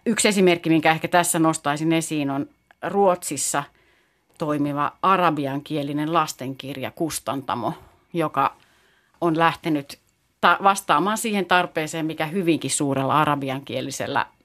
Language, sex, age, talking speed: Finnish, female, 30-49, 95 wpm